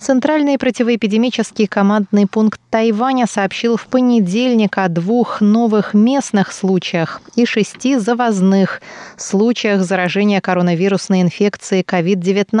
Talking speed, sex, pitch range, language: 100 wpm, female, 185-230 Hz, Russian